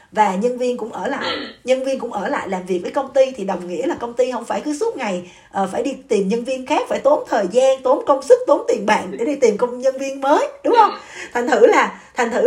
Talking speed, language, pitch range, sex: 280 wpm, Vietnamese, 205-285 Hz, female